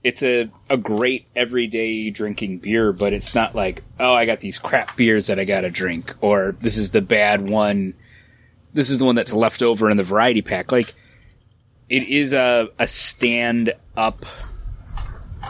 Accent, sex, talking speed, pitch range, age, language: American, male, 175 wpm, 105-125 Hz, 30-49, English